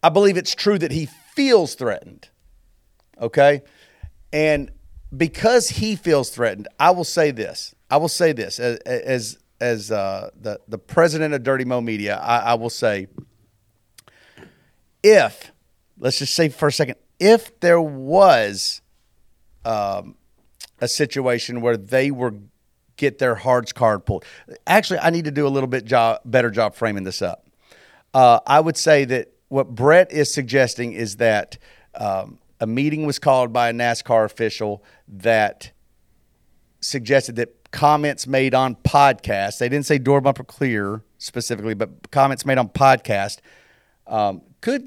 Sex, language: male, English